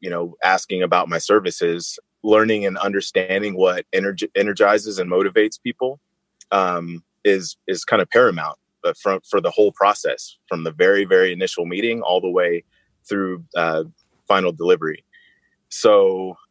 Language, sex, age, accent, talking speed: English, male, 30-49, American, 150 wpm